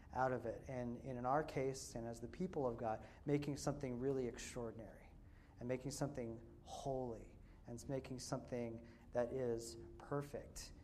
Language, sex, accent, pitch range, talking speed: English, male, American, 110-135 Hz, 155 wpm